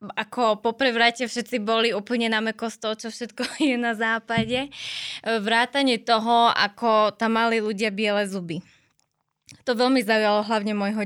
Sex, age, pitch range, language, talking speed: female, 20-39, 210-235 Hz, Slovak, 150 wpm